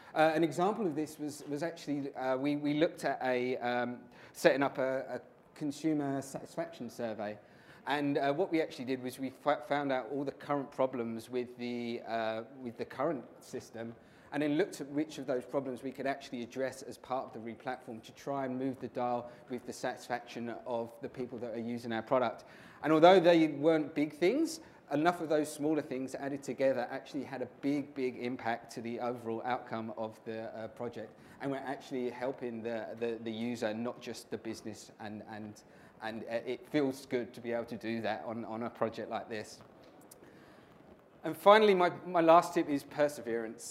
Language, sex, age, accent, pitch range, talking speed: English, male, 30-49, British, 120-145 Hz, 195 wpm